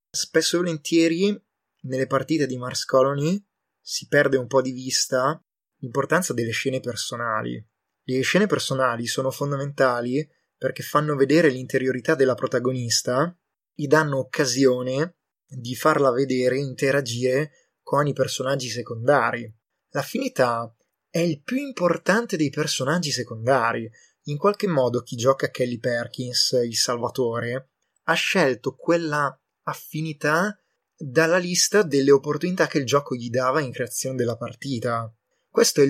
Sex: male